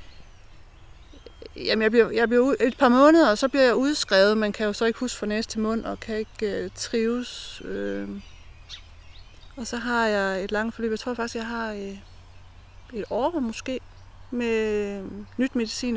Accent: Danish